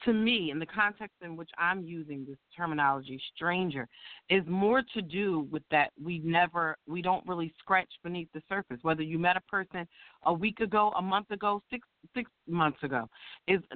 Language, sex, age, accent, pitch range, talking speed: English, female, 40-59, American, 165-215 Hz, 190 wpm